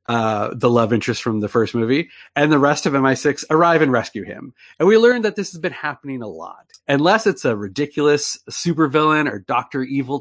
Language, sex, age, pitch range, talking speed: English, male, 30-49, 120-175 Hz, 205 wpm